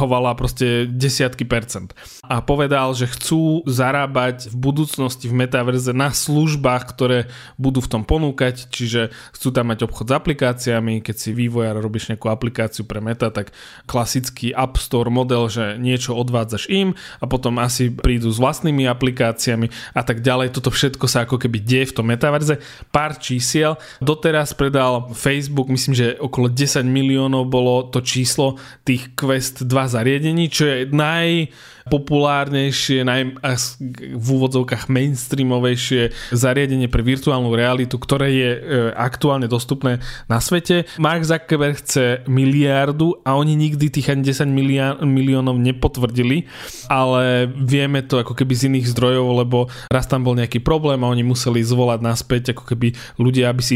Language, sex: Slovak, male